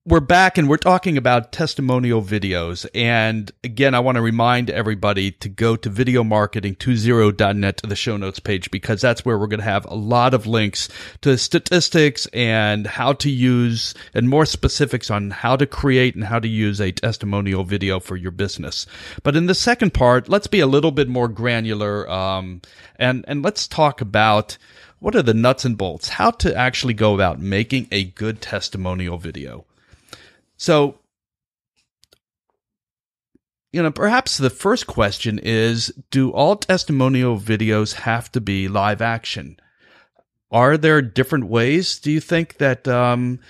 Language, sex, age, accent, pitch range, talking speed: English, male, 40-59, American, 105-130 Hz, 165 wpm